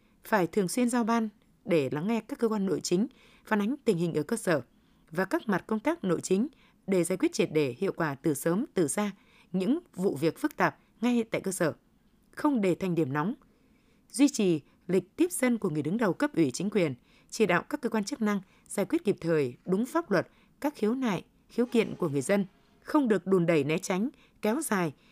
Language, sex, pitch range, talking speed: Vietnamese, female, 175-235 Hz, 225 wpm